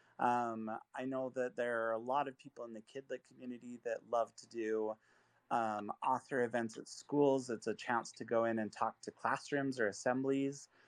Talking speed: 195 wpm